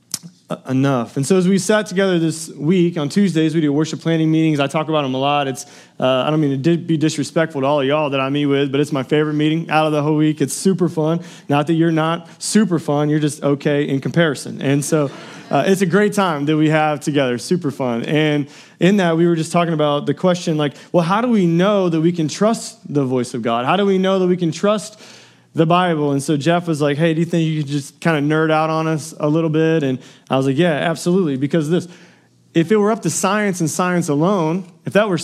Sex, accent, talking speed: male, American, 255 wpm